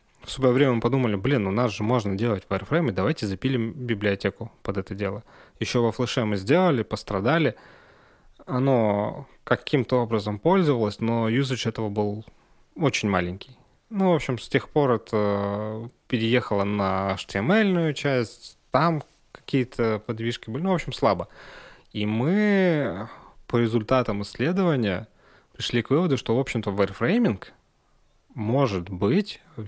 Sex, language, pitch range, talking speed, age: male, Russian, 105-130 Hz, 135 wpm, 20-39